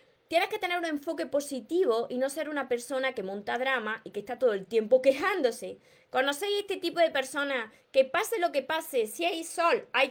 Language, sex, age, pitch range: Spanish, female, 20-39, 240-330 Hz